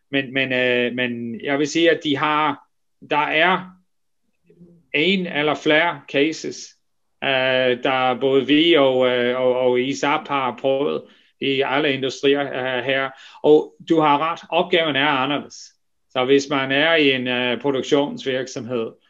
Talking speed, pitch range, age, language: 130 wpm, 125-150 Hz, 30-49, Danish